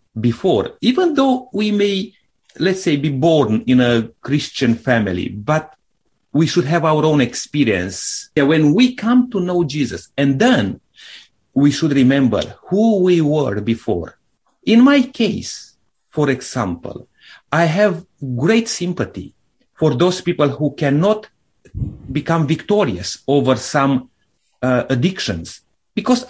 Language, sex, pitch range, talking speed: English, male, 135-190 Hz, 130 wpm